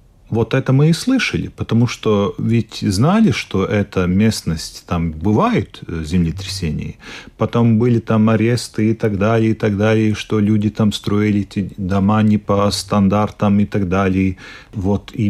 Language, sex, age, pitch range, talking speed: Russian, male, 40-59, 95-120 Hz, 155 wpm